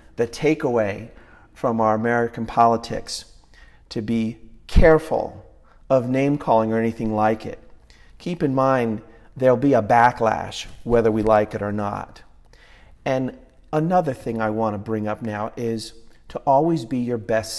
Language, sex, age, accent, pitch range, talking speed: English, male, 40-59, American, 110-140 Hz, 145 wpm